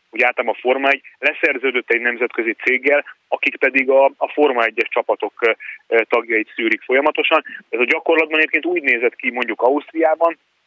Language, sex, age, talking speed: Hungarian, male, 30-49, 145 wpm